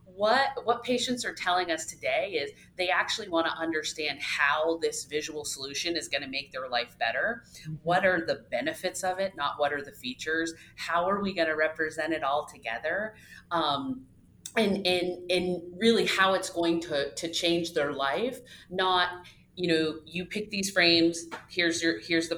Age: 30-49